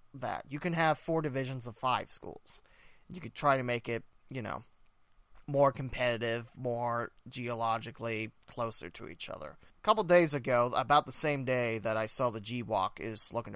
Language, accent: English, American